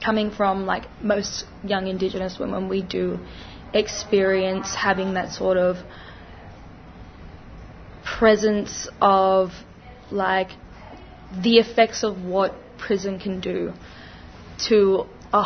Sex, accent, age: female, Australian, 10-29